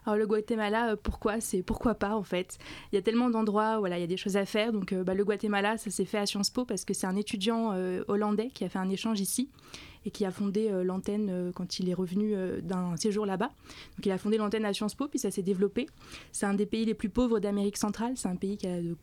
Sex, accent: female, French